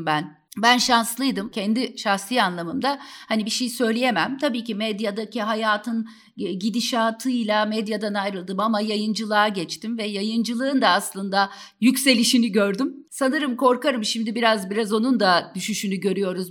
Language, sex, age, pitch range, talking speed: Turkish, female, 50-69, 215-265 Hz, 125 wpm